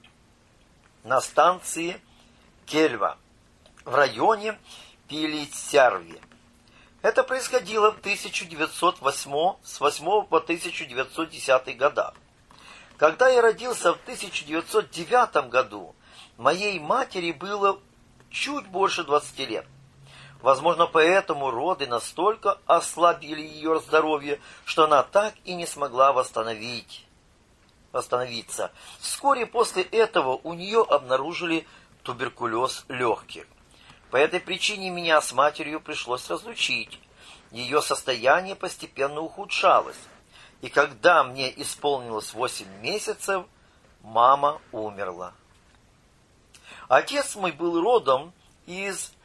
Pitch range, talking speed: 130-190 Hz, 90 wpm